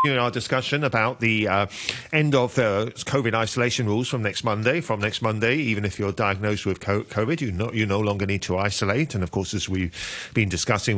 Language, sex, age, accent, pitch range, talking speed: English, male, 40-59, British, 100-130 Hz, 215 wpm